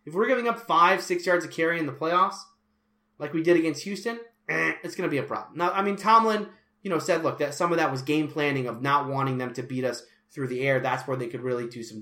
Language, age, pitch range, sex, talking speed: English, 30-49, 120-175 Hz, male, 275 wpm